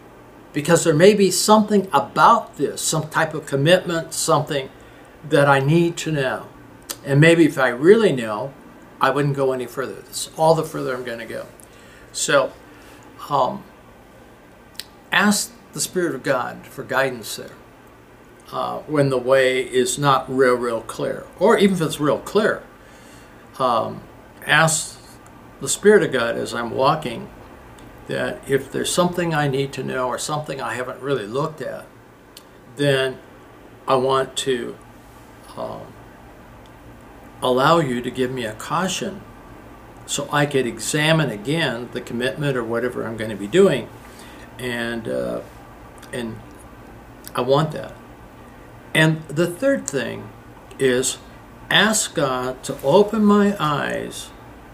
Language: English